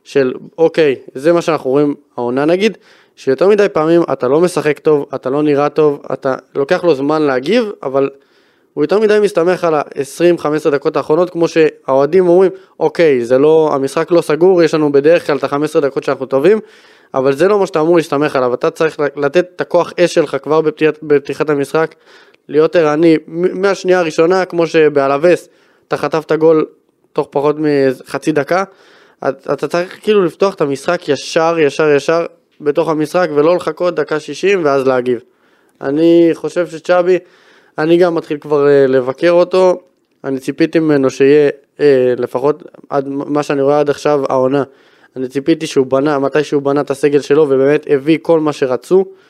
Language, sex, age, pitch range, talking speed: Hebrew, male, 20-39, 140-175 Hz, 170 wpm